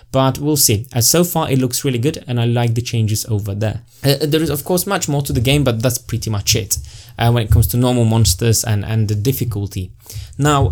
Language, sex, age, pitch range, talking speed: English, male, 20-39, 115-150 Hz, 245 wpm